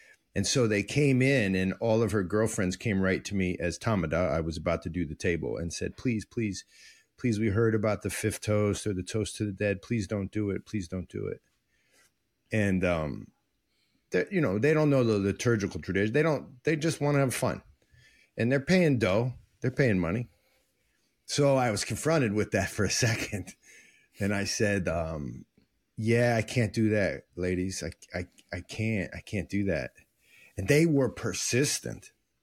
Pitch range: 95-125 Hz